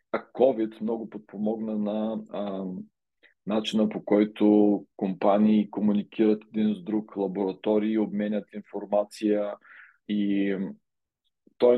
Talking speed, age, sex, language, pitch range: 95 wpm, 40-59, male, Bulgarian, 100-115 Hz